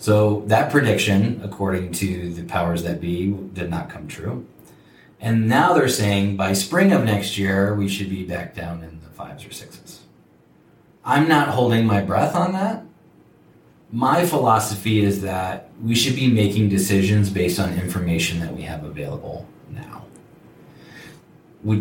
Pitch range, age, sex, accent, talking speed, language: 90-115 Hz, 30-49, male, American, 155 wpm, English